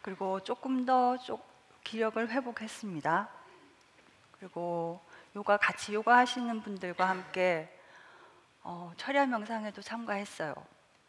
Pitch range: 195-255 Hz